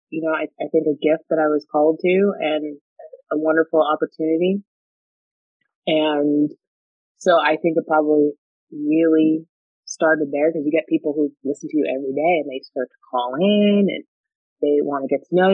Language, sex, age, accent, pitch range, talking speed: English, female, 30-49, American, 140-170 Hz, 185 wpm